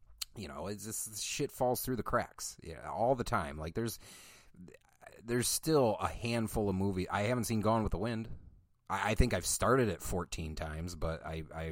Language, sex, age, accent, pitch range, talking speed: English, male, 30-49, American, 85-125 Hz, 200 wpm